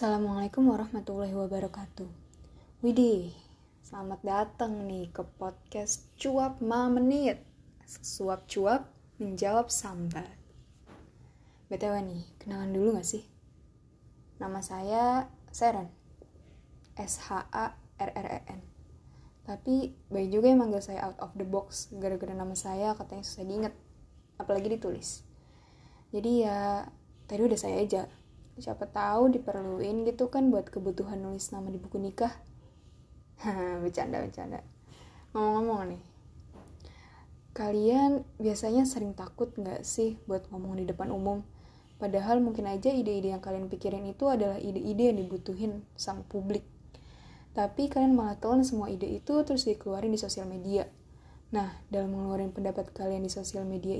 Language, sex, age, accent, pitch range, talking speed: Indonesian, female, 10-29, native, 195-225 Hz, 120 wpm